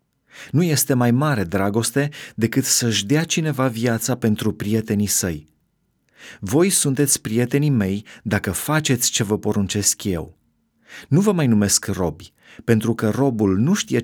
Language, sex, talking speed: Romanian, male, 140 wpm